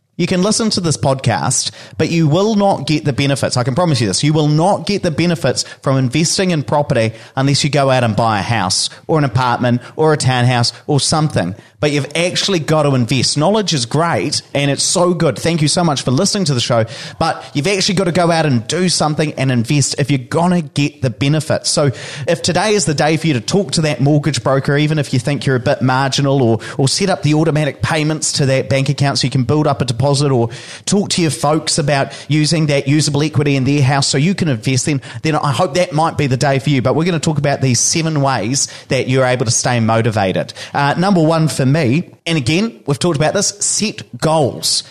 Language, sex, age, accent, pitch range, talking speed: English, male, 30-49, Australian, 130-160 Hz, 240 wpm